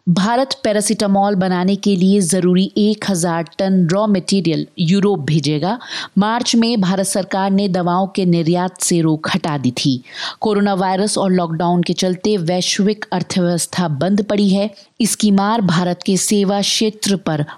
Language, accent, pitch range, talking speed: Hindi, native, 175-210 Hz, 145 wpm